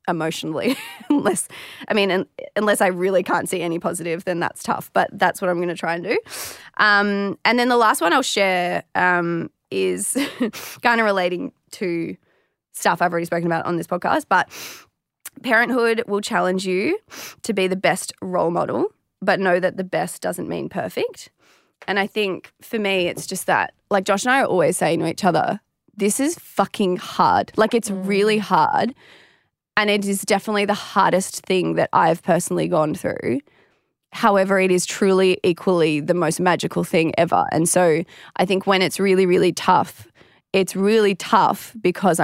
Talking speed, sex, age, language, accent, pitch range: 175 wpm, female, 20-39, English, Australian, 170-200 Hz